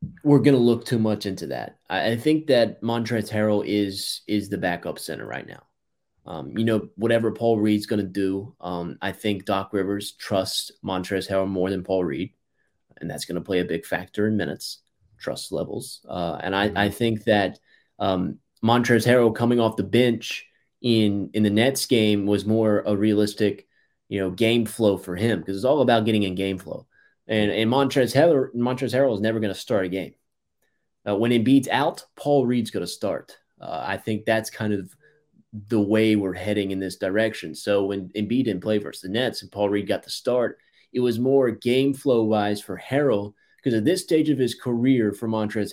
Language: English